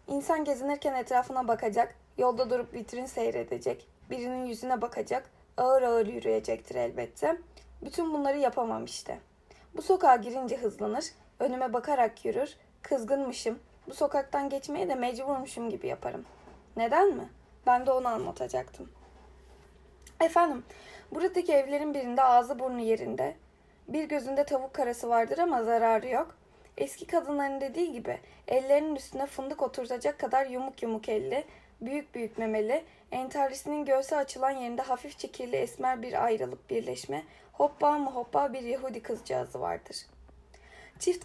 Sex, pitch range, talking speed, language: female, 235-290 Hz, 125 wpm, Turkish